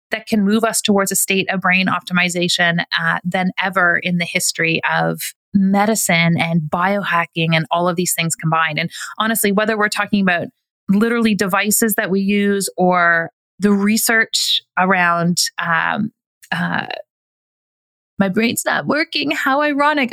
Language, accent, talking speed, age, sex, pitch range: English, American, 145 wpm, 30-49, female, 175-210 Hz